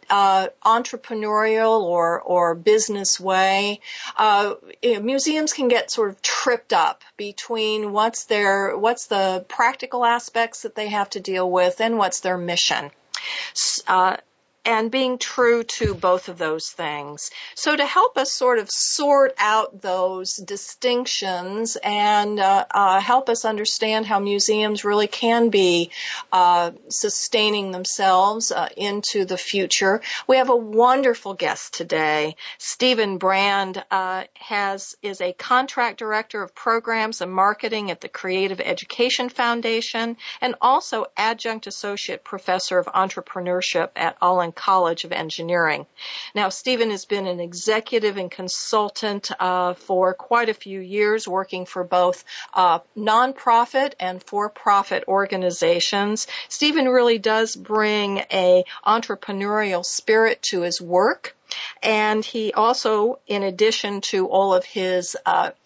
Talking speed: 135 wpm